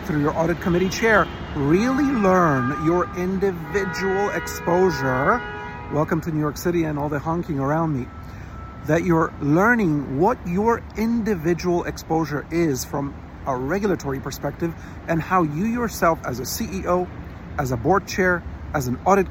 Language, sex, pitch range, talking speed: English, male, 135-180 Hz, 145 wpm